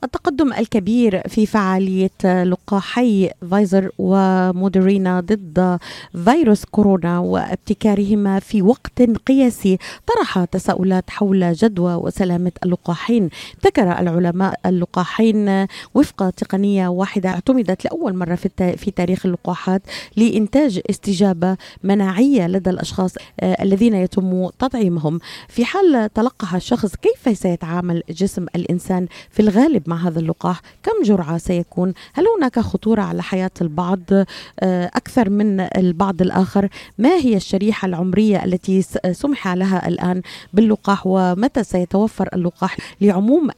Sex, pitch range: female, 180-215 Hz